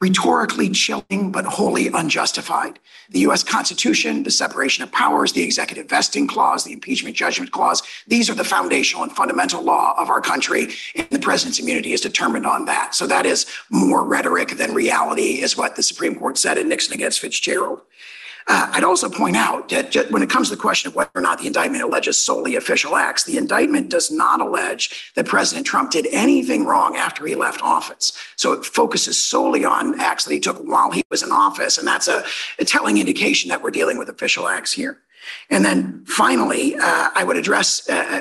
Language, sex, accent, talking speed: English, male, American, 200 wpm